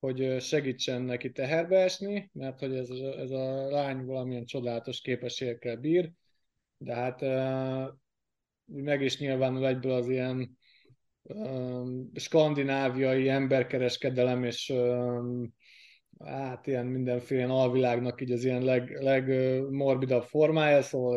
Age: 20-39